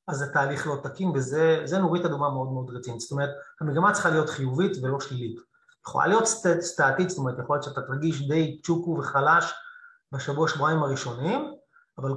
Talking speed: 175 wpm